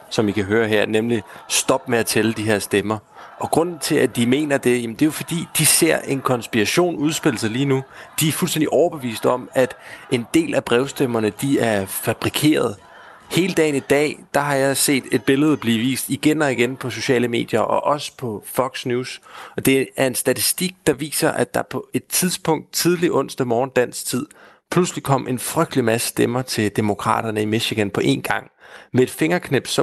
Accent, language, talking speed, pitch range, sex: native, Danish, 205 wpm, 115-150 Hz, male